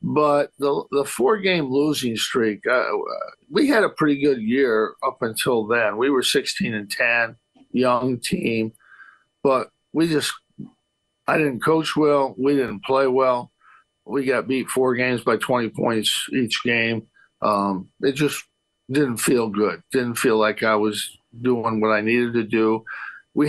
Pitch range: 110-135 Hz